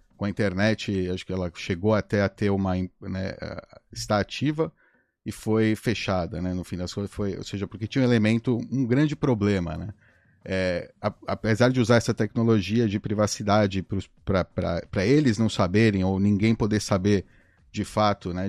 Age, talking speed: 30-49, 170 wpm